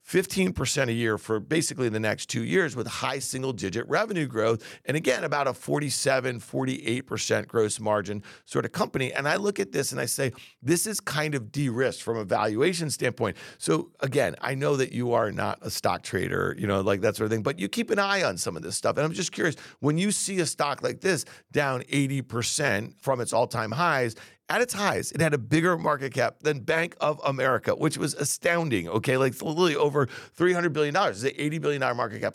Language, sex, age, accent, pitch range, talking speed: English, male, 40-59, American, 110-150 Hz, 215 wpm